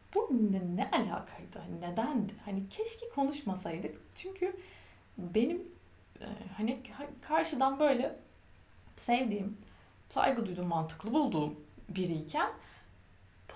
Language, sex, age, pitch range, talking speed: Turkish, female, 30-49, 195-320 Hz, 85 wpm